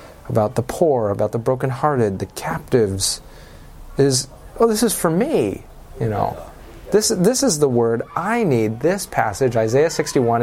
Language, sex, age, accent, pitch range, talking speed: English, male, 30-49, American, 115-145 Hz, 155 wpm